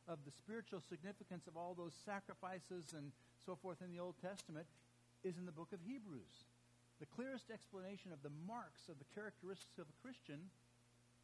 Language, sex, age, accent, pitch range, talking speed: English, male, 60-79, American, 120-170 Hz, 175 wpm